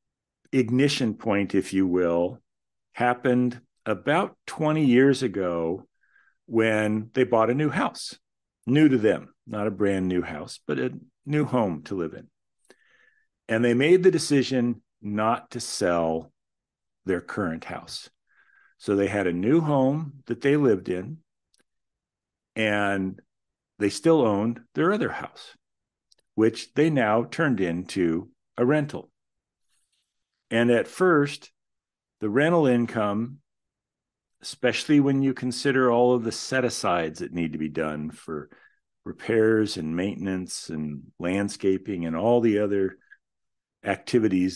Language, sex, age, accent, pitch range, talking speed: English, male, 50-69, American, 95-130 Hz, 130 wpm